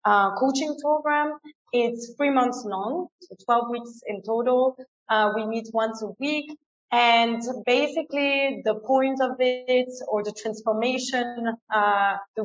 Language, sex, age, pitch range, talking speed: English, female, 20-39, 215-255 Hz, 140 wpm